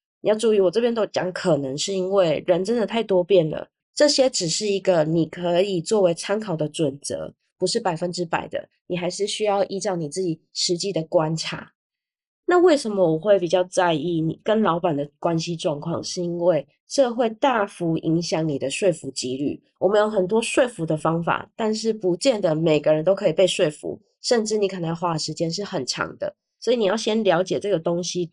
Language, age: Chinese, 20-39